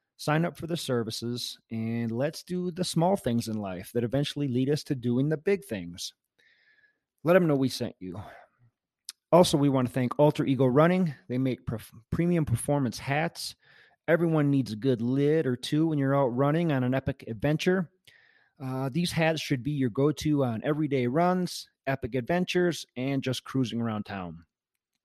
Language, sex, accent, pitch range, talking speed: English, male, American, 120-155 Hz, 175 wpm